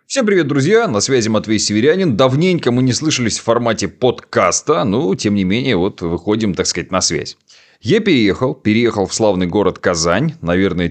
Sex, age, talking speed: male, 30-49, 175 wpm